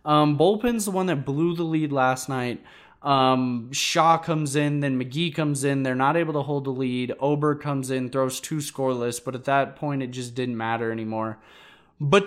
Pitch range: 125-155 Hz